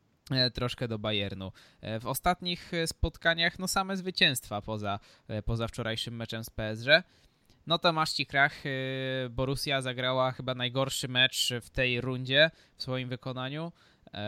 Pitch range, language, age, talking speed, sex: 110-150 Hz, Polish, 20-39, 125 wpm, male